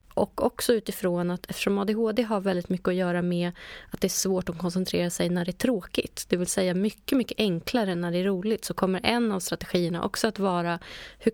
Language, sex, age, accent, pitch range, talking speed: Swedish, female, 20-39, native, 175-215 Hz, 220 wpm